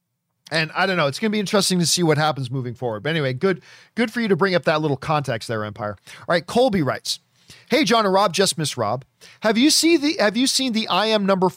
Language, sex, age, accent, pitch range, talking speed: English, male, 40-59, American, 140-200 Hz, 265 wpm